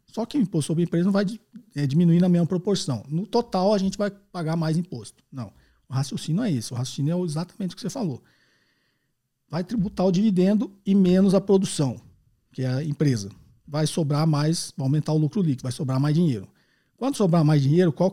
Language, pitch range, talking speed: Portuguese, 135-190 Hz, 210 wpm